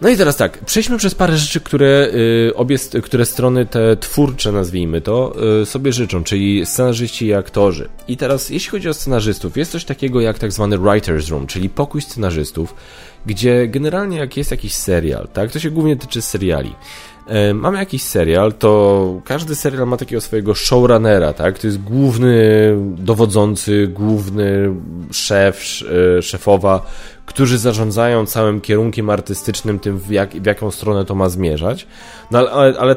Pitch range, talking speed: 100-130 Hz, 160 wpm